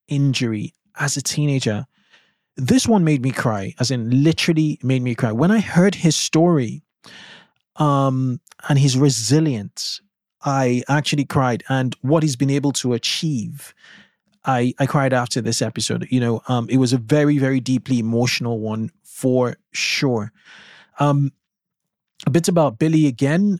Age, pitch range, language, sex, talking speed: 20-39, 125-150 Hz, English, male, 150 wpm